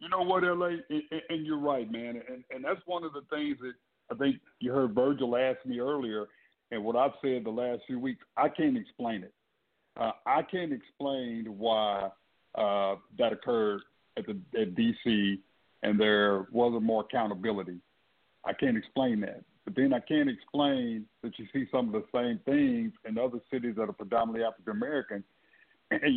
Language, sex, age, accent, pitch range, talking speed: English, male, 50-69, American, 115-150 Hz, 185 wpm